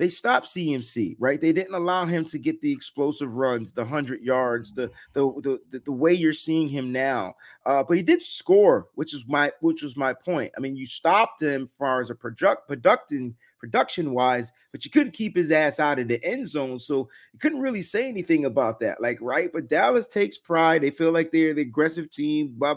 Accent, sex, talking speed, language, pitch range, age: American, male, 215 wpm, English, 130-165 Hz, 30-49